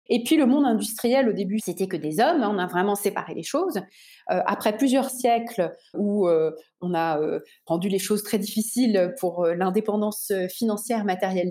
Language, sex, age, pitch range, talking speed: French, female, 30-49, 195-280 Hz, 195 wpm